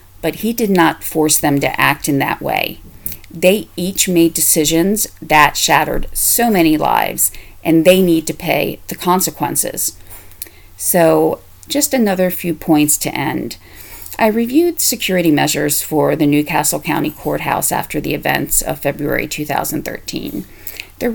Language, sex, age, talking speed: English, female, 40-59, 140 wpm